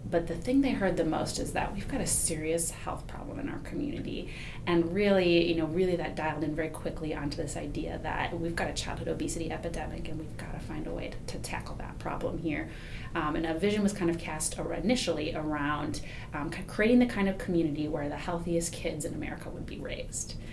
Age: 30-49